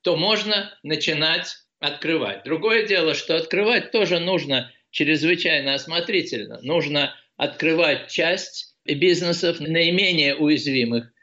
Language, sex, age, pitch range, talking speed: Russian, male, 50-69, 135-175 Hz, 95 wpm